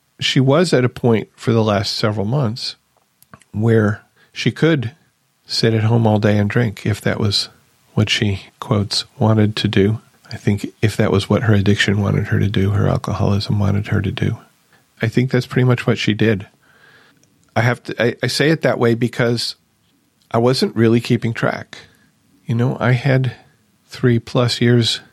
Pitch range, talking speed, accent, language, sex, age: 110-130 Hz, 185 wpm, American, English, male, 40-59